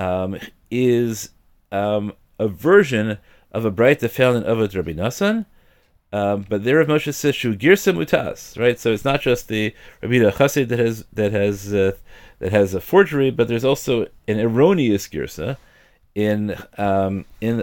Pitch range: 100-135 Hz